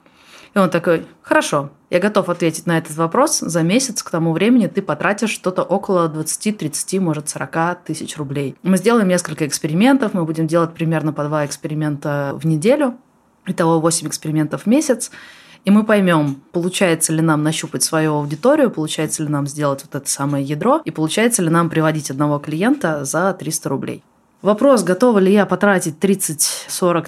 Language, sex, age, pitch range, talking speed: Russian, female, 20-39, 155-190 Hz, 165 wpm